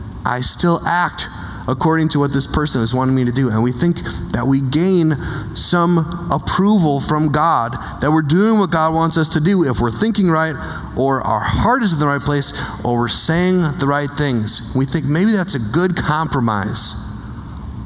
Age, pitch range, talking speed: 30-49, 115-185 Hz, 190 wpm